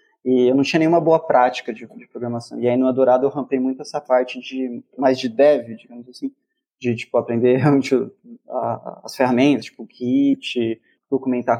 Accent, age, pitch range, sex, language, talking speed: Brazilian, 20-39, 120-140 Hz, male, Portuguese, 180 wpm